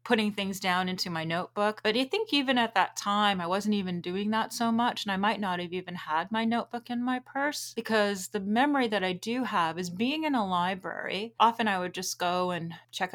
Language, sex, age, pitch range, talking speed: English, female, 30-49, 170-210 Hz, 235 wpm